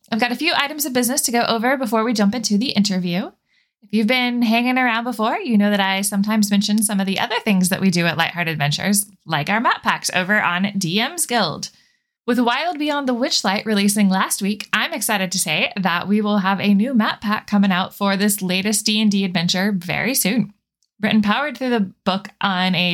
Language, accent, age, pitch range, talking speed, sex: English, American, 20-39, 190-240 Hz, 215 wpm, female